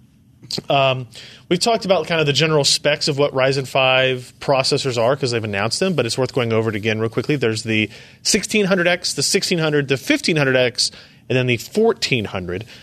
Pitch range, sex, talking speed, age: 120-160 Hz, male, 185 wpm, 30-49